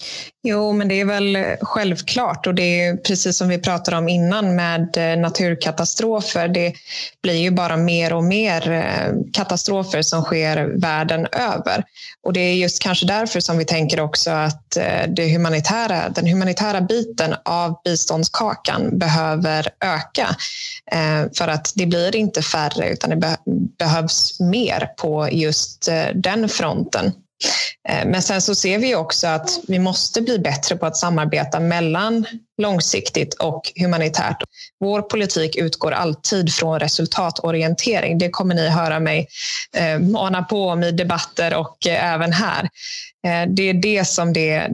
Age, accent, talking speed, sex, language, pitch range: 20-39, native, 140 wpm, female, Swedish, 165-195 Hz